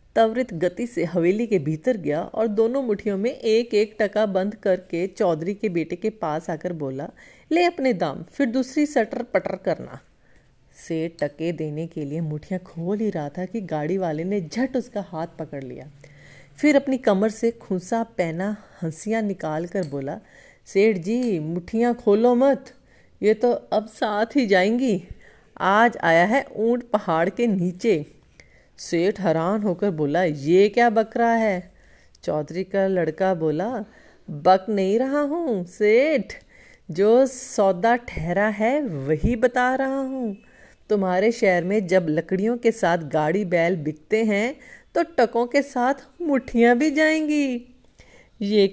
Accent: native